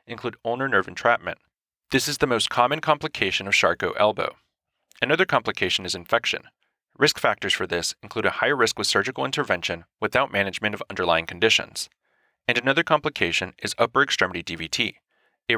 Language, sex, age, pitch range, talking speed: English, male, 30-49, 120-175 Hz, 160 wpm